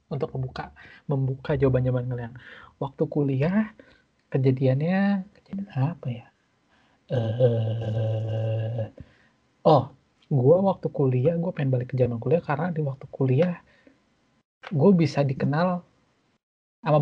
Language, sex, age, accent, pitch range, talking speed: Indonesian, male, 20-39, native, 125-160 Hz, 105 wpm